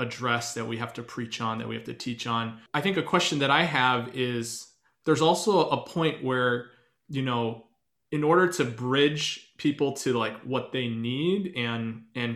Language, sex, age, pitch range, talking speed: English, male, 20-39, 120-140 Hz, 195 wpm